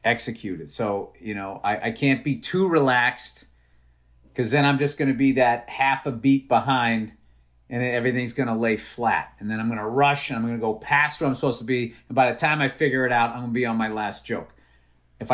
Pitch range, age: 115-140 Hz, 40-59